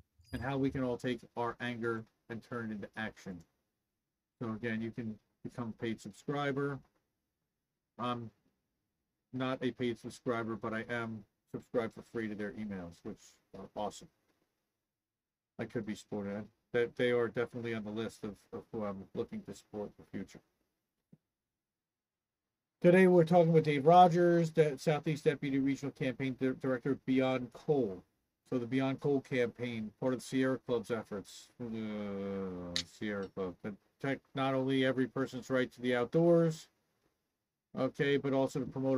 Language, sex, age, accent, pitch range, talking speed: English, male, 40-59, American, 110-130 Hz, 160 wpm